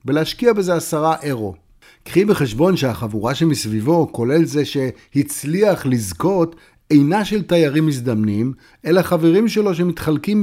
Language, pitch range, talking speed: Hebrew, 120-170 Hz, 115 wpm